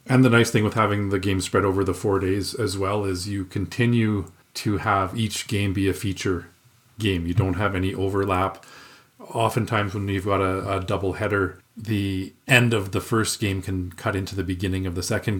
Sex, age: male, 40-59